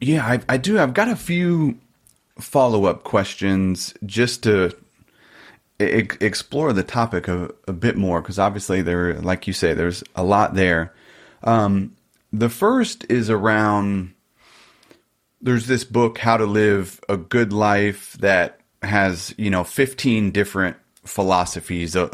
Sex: male